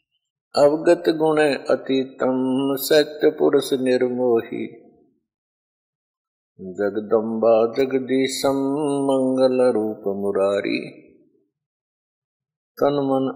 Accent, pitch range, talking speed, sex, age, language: native, 130-165 Hz, 50 wpm, male, 50-69, Hindi